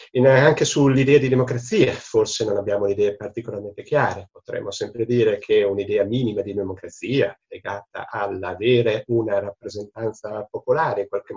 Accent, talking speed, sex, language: native, 130 wpm, male, Italian